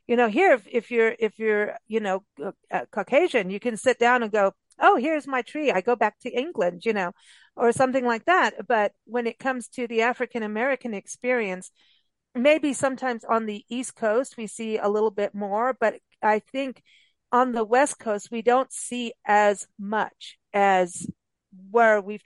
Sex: female